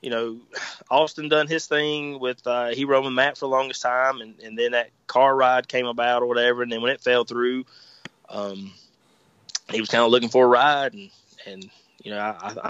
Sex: male